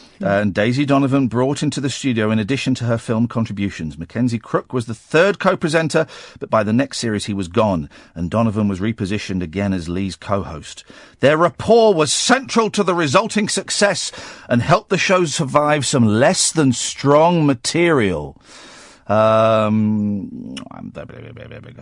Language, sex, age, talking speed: English, male, 50-69, 150 wpm